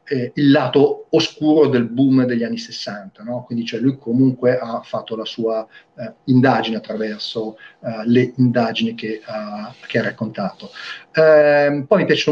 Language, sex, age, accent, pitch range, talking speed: Italian, male, 40-59, native, 120-150 Hz, 160 wpm